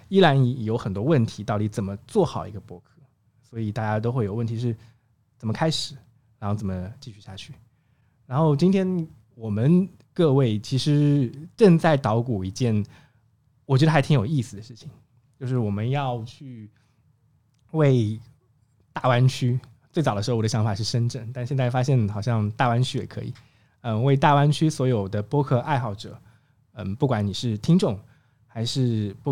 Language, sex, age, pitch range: Chinese, male, 20-39, 110-140 Hz